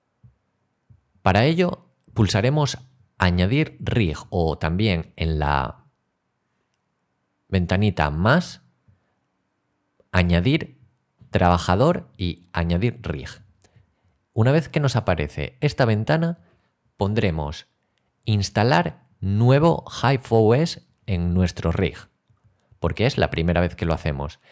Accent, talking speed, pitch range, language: Spanish, 95 wpm, 85-125 Hz, English